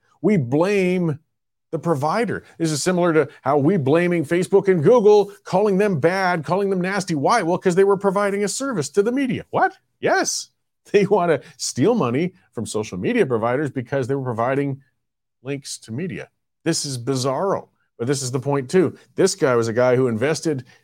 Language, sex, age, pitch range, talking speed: English, male, 40-59, 125-165 Hz, 185 wpm